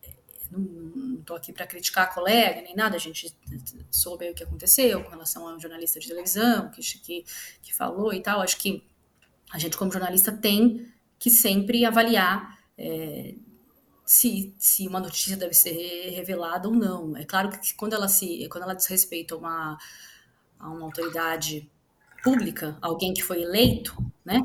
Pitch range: 175-225 Hz